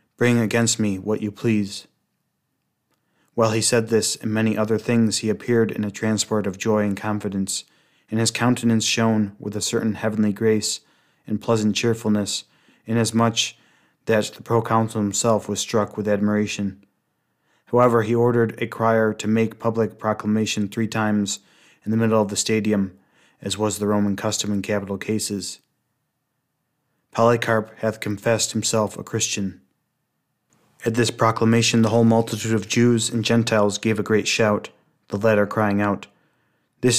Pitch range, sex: 105-115 Hz, male